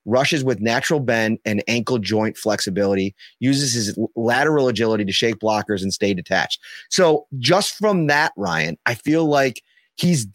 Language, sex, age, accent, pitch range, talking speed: English, male, 30-49, American, 115-150 Hz, 155 wpm